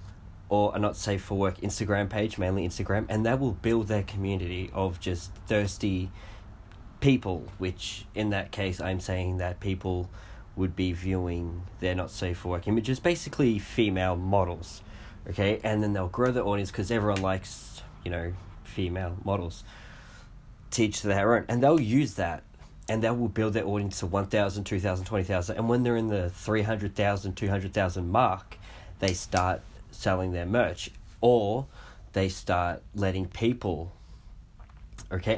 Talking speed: 155 wpm